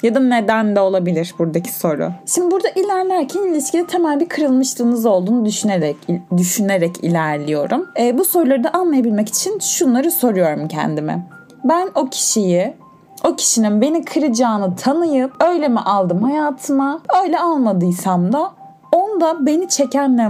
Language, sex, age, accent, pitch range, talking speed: Turkish, female, 30-49, native, 185-280 Hz, 135 wpm